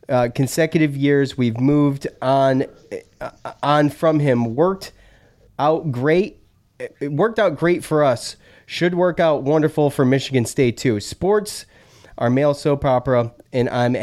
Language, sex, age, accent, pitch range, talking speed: English, male, 30-49, American, 120-150 Hz, 145 wpm